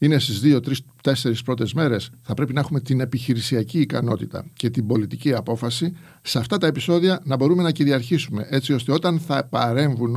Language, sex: Greek, male